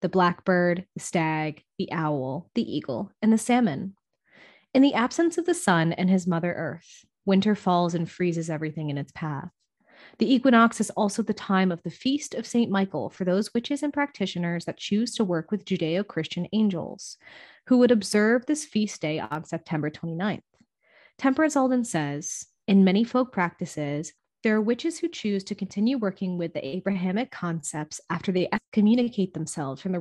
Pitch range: 170-215 Hz